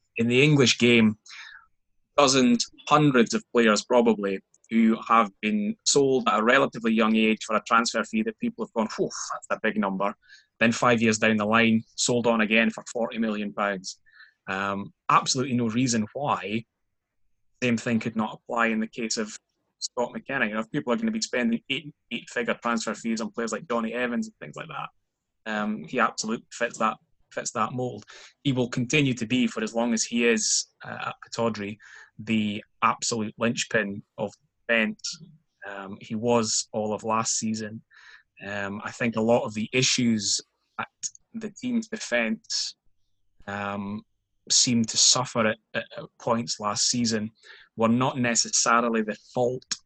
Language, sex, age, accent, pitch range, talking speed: English, male, 20-39, British, 110-125 Hz, 170 wpm